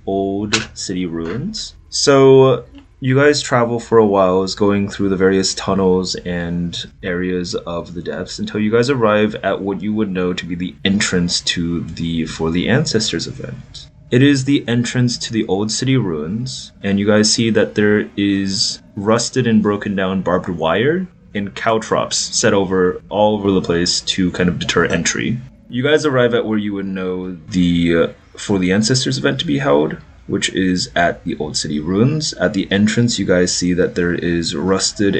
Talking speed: 185 wpm